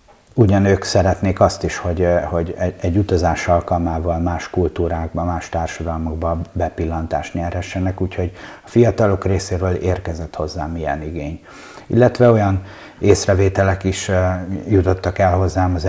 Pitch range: 80-95 Hz